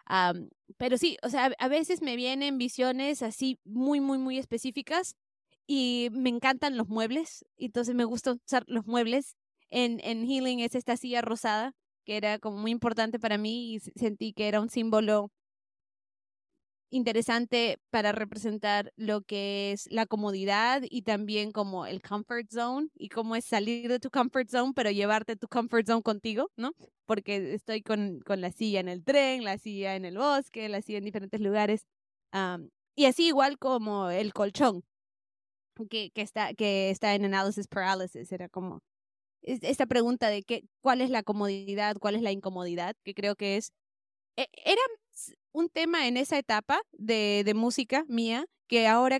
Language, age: English, 20-39